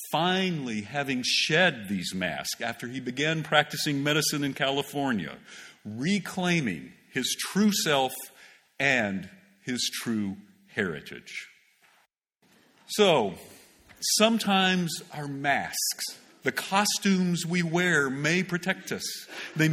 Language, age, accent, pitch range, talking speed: English, 50-69, American, 140-185 Hz, 95 wpm